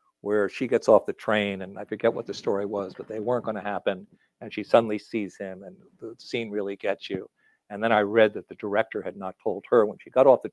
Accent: American